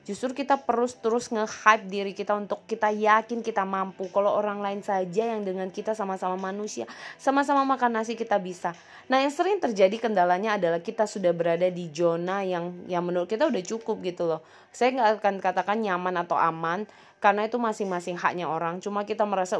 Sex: female